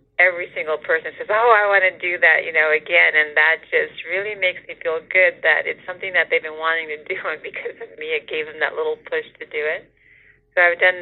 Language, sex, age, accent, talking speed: English, female, 40-59, American, 250 wpm